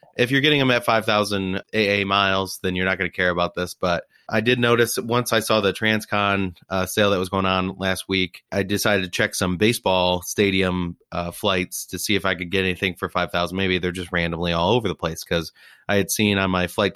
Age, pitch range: 30-49, 90-105 Hz